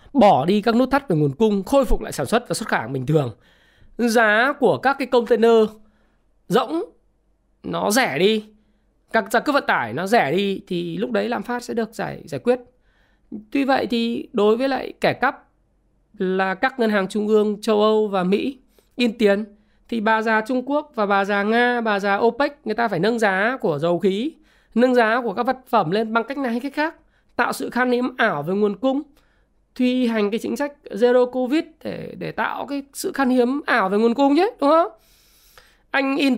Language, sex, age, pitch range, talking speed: Vietnamese, male, 20-39, 195-250 Hz, 210 wpm